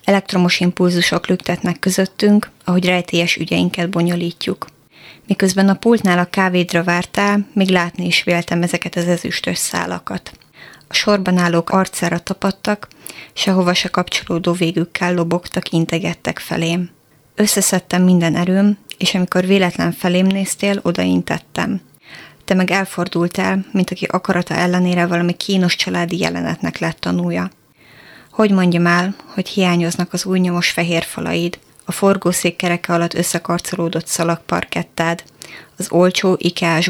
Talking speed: 120 wpm